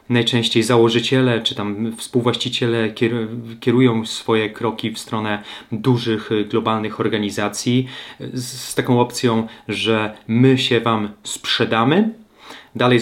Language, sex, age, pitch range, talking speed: Polish, male, 30-49, 110-130 Hz, 100 wpm